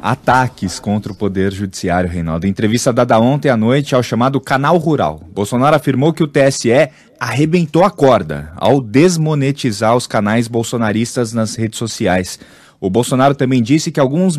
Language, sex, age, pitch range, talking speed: Portuguese, male, 20-39, 120-170 Hz, 155 wpm